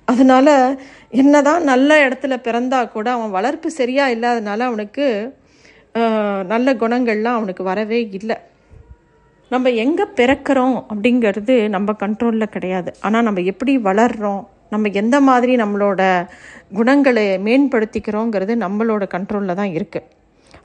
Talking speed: 110 wpm